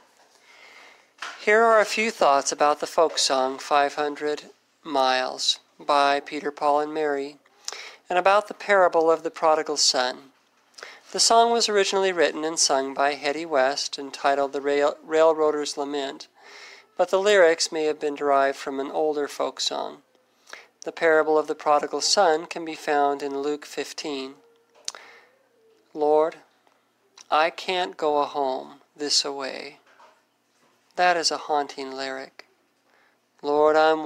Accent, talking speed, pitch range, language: American, 135 wpm, 140-165 Hz, English